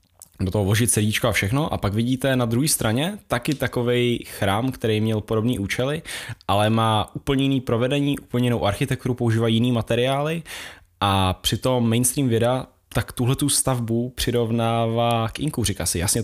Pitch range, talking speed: 110-125 Hz, 160 wpm